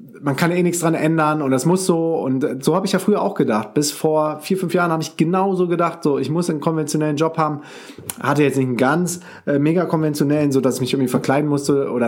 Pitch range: 130-160 Hz